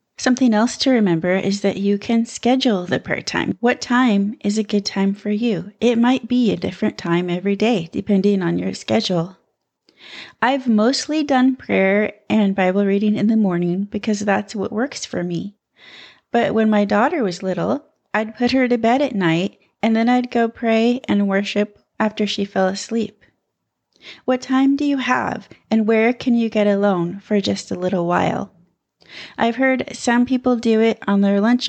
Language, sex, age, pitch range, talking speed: English, female, 30-49, 195-240 Hz, 185 wpm